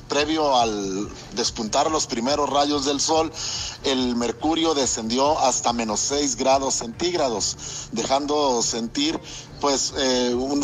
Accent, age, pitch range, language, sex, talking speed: Mexican, 50-69, 120-145 Hz, Spanish, male, 115 wpm